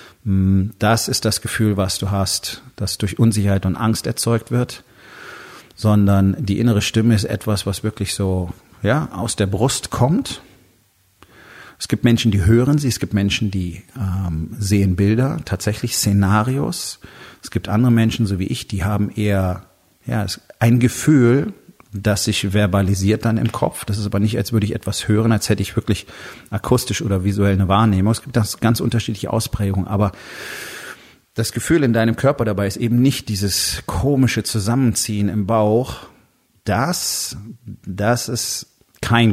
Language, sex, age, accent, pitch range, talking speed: German, male, 40-59, German, 100-120 Hz, 160 wpm